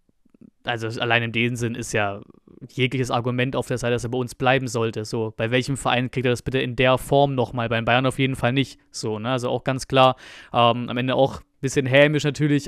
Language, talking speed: German, 240 wpm